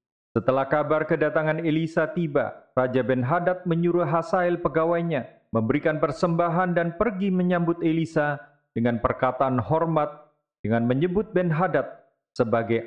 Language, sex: Indonesian, male